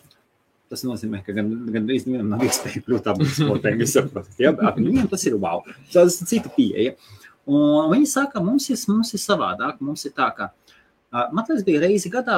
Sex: male